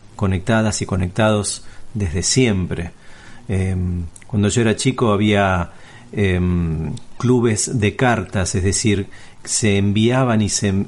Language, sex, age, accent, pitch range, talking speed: Spanish, male, 40-59, Argentinian, 100-120 Hz, 115 wpm